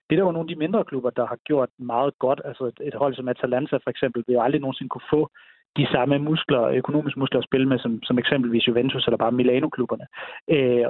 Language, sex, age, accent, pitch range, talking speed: Danish, male, 30-49, native, 125-150 Hz, 225 wpm